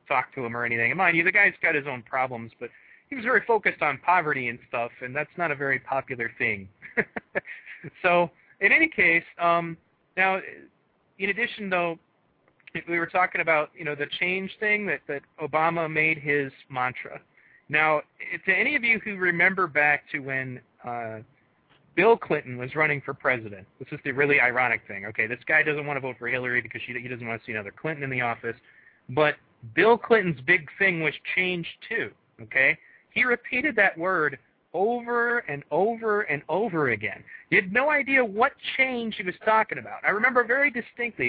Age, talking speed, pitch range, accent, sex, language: 30-49, 190 wpm, 135-185 Hz, American, male, English